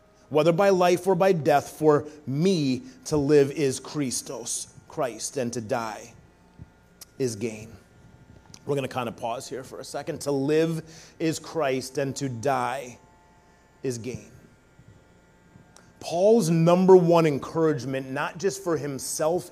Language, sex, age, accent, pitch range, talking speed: English, male, 30-49, American, 145-195 Hz, 140 wpm